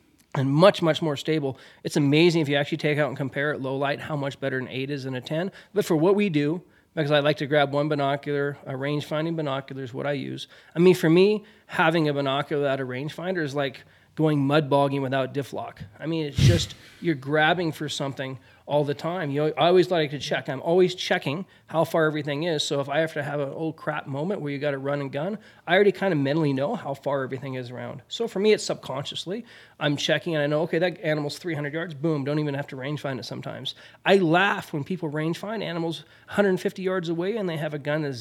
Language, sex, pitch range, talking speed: English, male, 140-175 Hz, 245 wpm